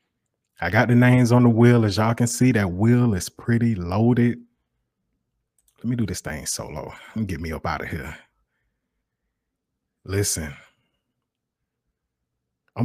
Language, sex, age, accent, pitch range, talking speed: English, male, 20-39, American, 100-125 Hz, 150 wpm